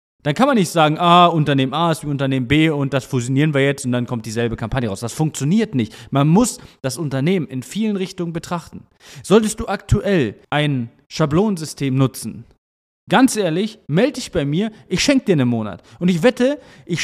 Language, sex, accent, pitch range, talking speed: German, male, German, 130-190 Hz, 195 wpm